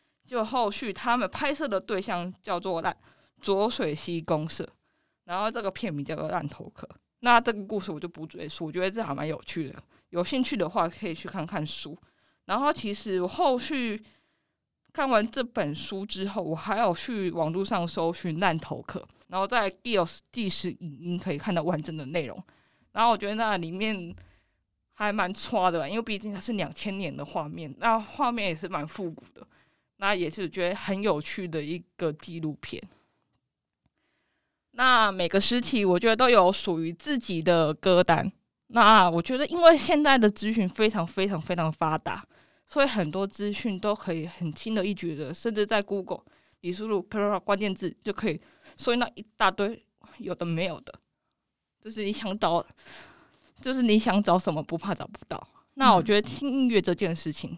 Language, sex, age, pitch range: Chinese, female, 20-39, 170-220 Hz